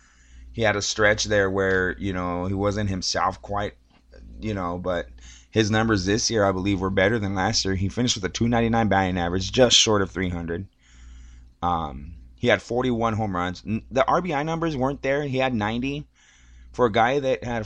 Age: 20-39